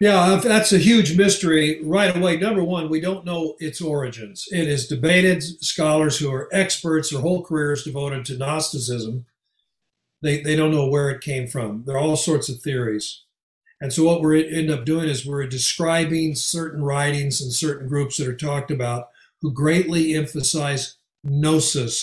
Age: 60-79